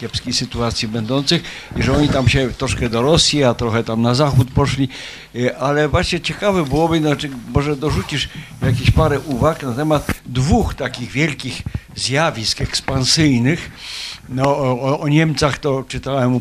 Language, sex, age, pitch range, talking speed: Polish, male, 60-79, 125-155 Hz, 145 wpm